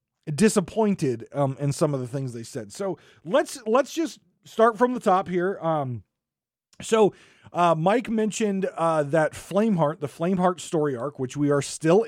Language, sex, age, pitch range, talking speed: English, male, 30-49, 135-190 Hz, 170 wpm